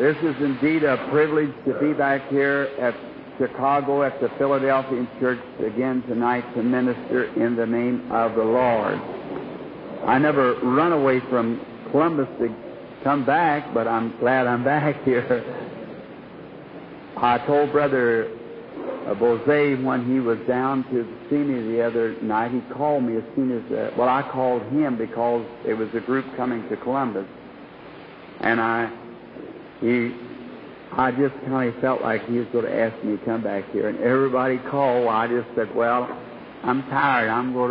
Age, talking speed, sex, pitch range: 60-79, 160 wpm, male, 115-135 Hz